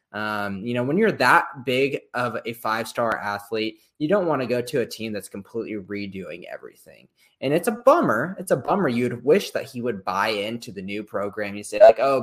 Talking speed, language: 220 wpm, English